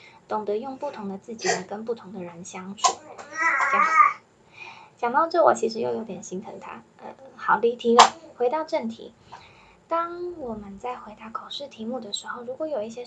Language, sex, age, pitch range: Chinese, female, 10-29, 215-265 Hz